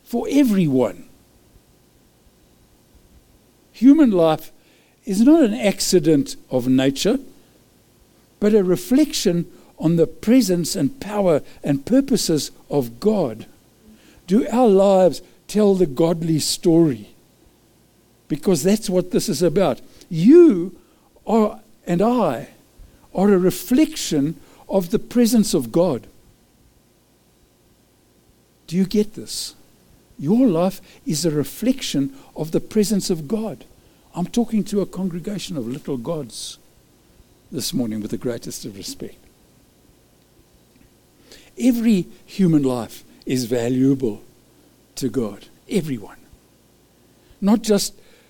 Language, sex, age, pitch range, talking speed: English, male, 60-79, 135-210 Hz, 105 wpm